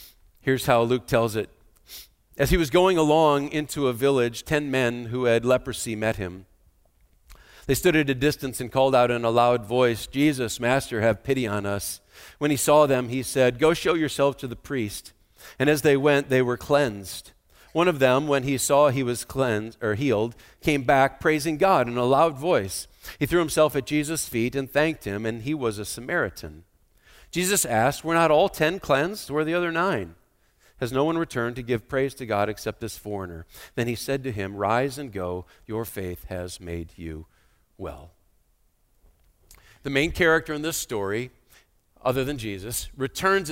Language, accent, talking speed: English, American, 190 wpm